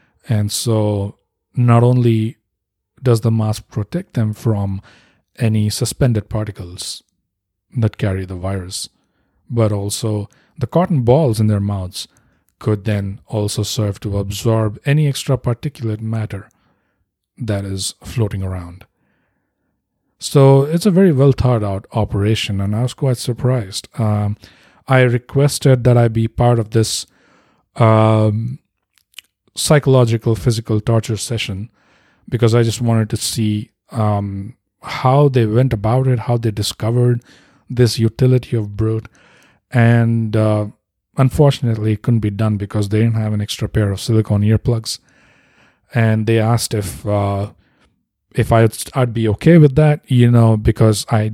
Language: English